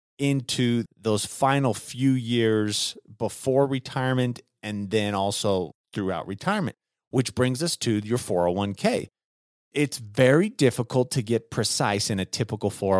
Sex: male